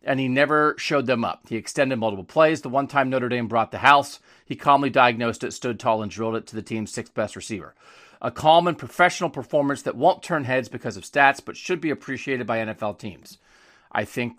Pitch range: 110-140 Hz